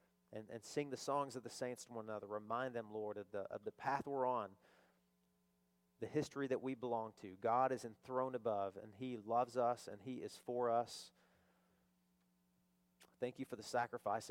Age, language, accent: 40-59, English, American